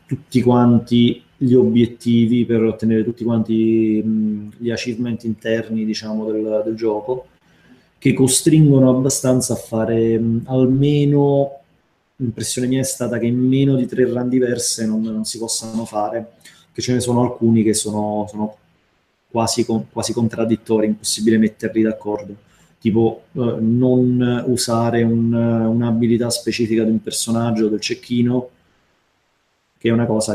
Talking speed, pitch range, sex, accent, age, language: 135 wpm, 110-130 Hz, male, native, 30-49, Italian